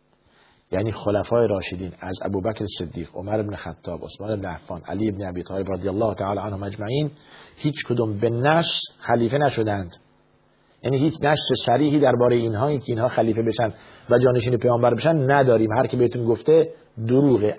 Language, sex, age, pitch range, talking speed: Persian, male, 50-69, 110-135 Hz, 155 wpm